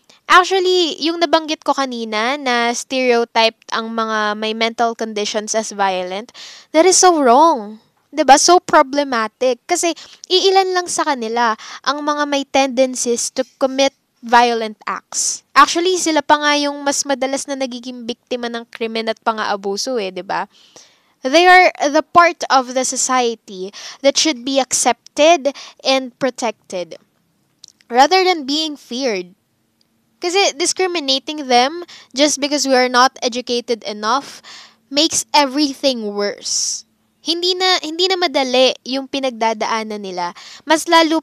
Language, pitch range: Filipino, 230-315 Hz